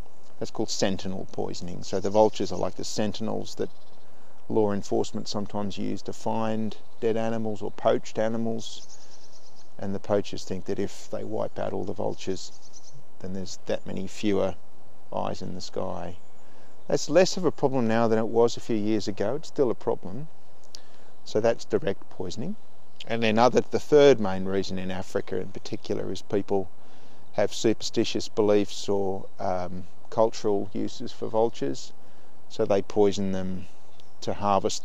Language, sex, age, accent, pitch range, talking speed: English, male, 40-59, Australian, 95-110 Hz, 160 wpm